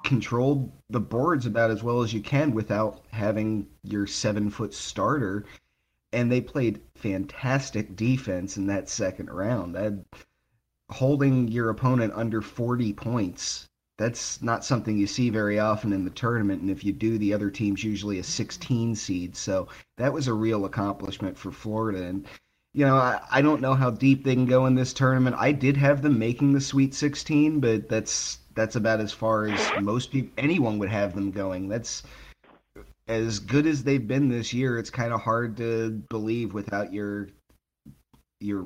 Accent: American